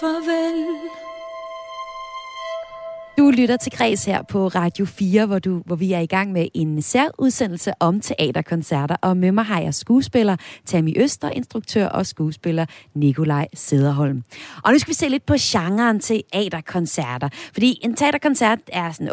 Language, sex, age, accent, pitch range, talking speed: Danish, female, 30-49, native, 170-245 Hz, 150 wpm